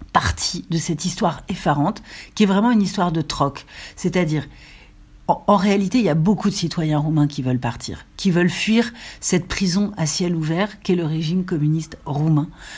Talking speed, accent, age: 185 wpm, French, 60-79